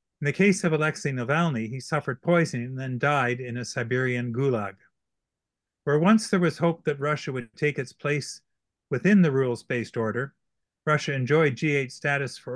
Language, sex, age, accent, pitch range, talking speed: English, male, 40-59, American, 120-155 Hz, 175 wpm